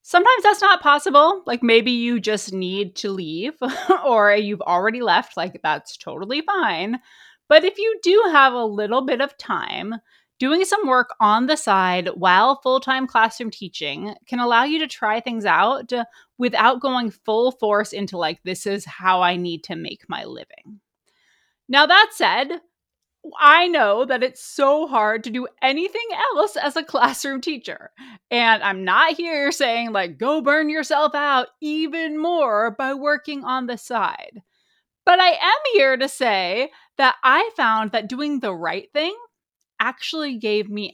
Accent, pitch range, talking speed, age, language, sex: American, 210-295 Hz, 165 wpm, 20-39, English, female